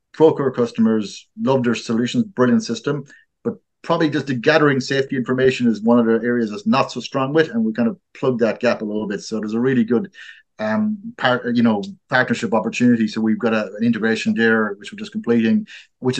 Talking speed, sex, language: 210 wpm, male, English